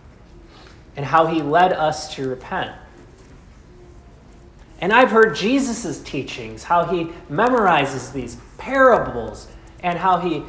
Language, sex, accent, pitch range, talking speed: English, male, American, 135-200 Hz, 115 wpm